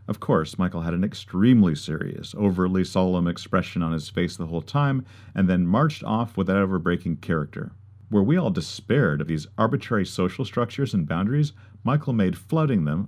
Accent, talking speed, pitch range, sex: American, 180 wpm, 90-115 Hz, male